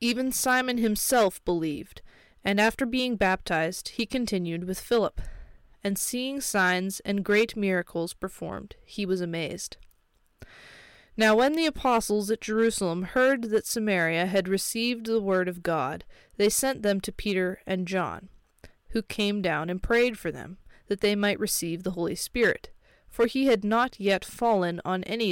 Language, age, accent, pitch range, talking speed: English, 20-39, American, 185-230 Hz, 155 wpm